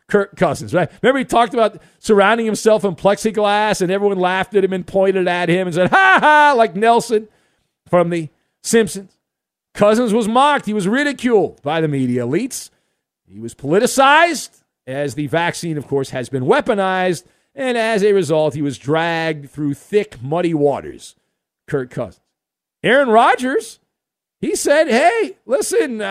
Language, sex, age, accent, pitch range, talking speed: English, male, 50-69, American, 170-250 Hz, 160 wpm